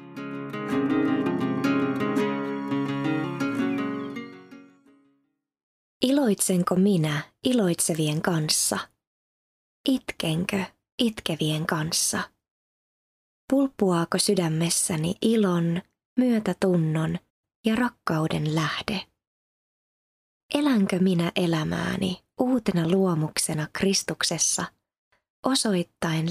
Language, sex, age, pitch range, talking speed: Finnish, female, 20-39, 160-205 Hz, 50 wpm